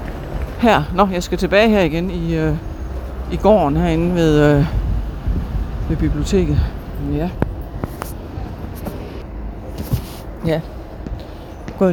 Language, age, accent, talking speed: Danish, 60-79, native, 100 wpm